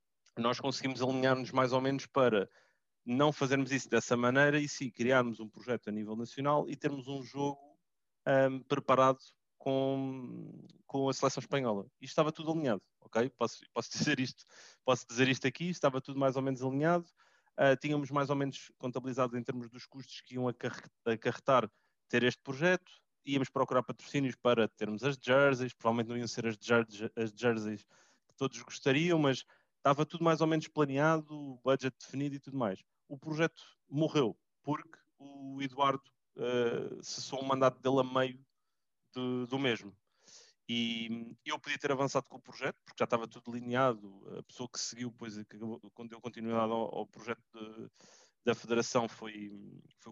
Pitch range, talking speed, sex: 115-140 Hz, 165 wpm, male